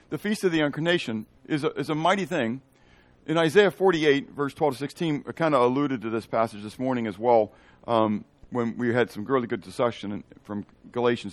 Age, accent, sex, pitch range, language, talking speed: 50-69, American, male, 115-165 Hz, English, 205 wpm